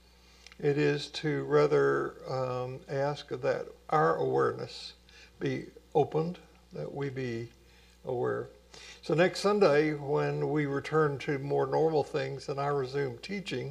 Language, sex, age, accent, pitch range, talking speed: English, male, 60-79, American, 120-150 Hz, 125 wpm